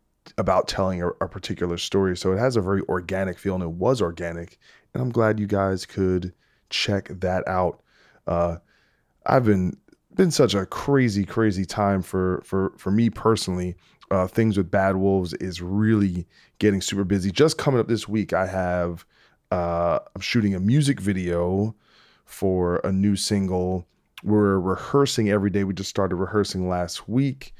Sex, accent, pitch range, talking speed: male, American, 90-105 Hz, 165 wpm